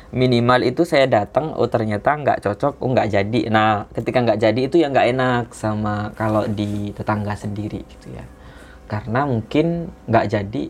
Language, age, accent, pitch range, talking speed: Indonesian, 20-39, native, 105-150 Hz, 170 wpm